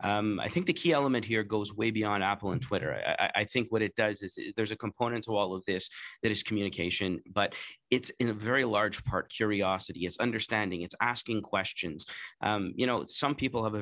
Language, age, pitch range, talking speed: English, 30-49, 100-125 Hz, 215 wpm